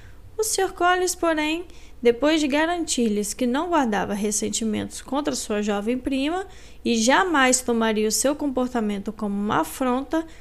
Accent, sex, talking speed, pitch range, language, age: Brazilian, female, 140 wpm, 215-295 Hz, Portuguese, 10-29